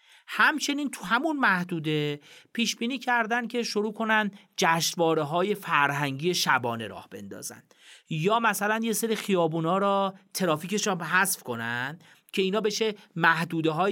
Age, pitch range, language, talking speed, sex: 40-59, 155-200 Hz, Persian, 130 wpm, male